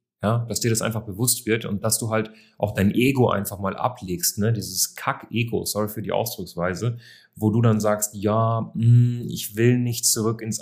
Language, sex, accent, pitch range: German, male, German, 100-120 Hz